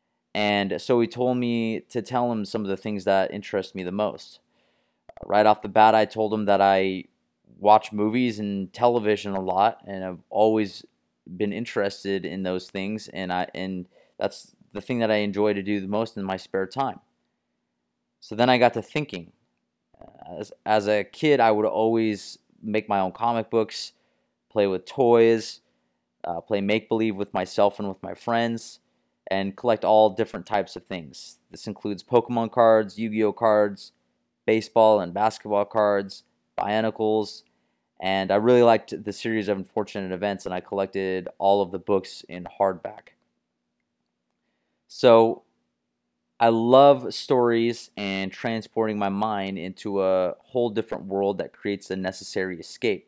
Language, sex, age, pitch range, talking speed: English, male, 20-39, 95-110 Hz, 160 wpm